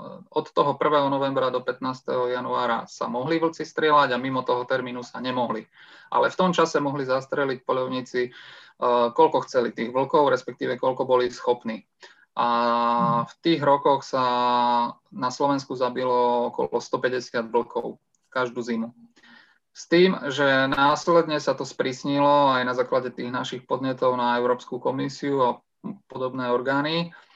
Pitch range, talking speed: 125-150 Hz, 145 wpm